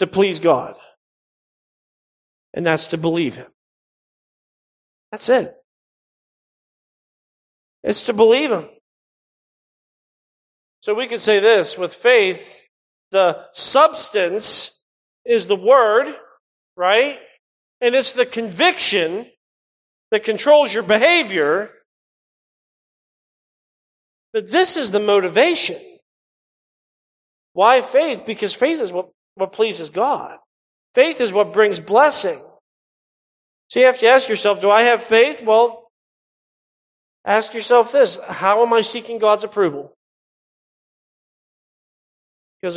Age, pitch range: 40-59, 180-250 Hz